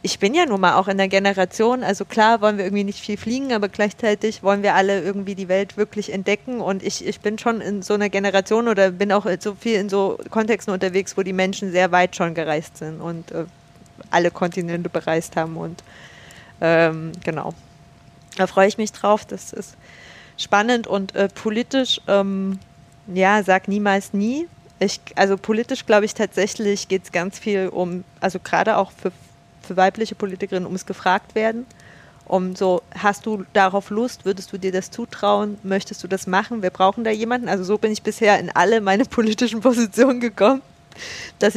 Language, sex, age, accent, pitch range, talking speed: German, female, 20-39, German, 185-215 Hz, 190 wpm